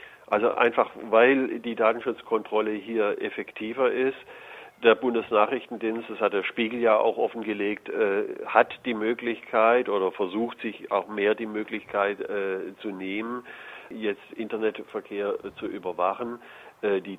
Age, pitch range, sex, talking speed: 50-69, 95-115 Hz, male, 120 wpm